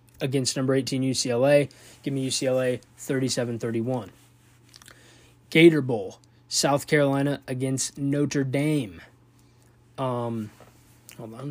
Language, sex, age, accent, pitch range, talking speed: English, male, 20-39, American, 125-145 Hz, 110 wpm